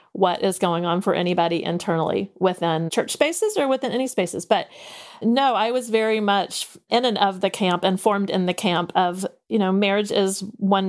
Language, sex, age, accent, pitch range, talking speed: English, female, 40-59, American, 175-205 Hz, 200 wpm